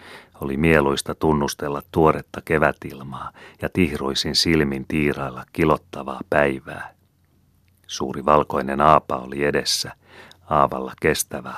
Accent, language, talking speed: native, Finnish, 95 wpm